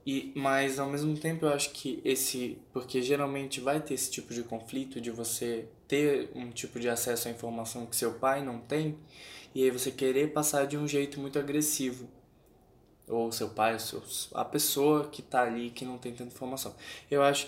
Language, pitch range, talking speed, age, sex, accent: Portuguese, 120-145 Hz, 200 wpm, 10-29, male, Brazilian